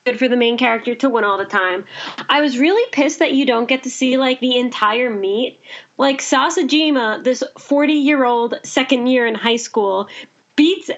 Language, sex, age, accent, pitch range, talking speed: English, female, 20-39, American, 230-290 Hz, 185 wpm